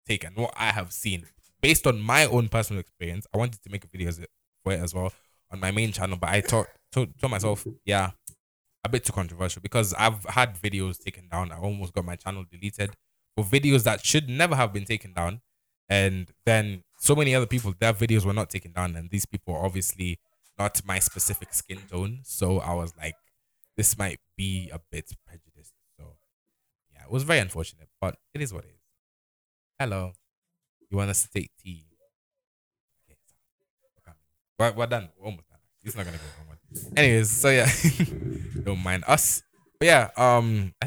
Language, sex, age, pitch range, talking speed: English, male, 20-39, 90-115 Hz, 190 wpm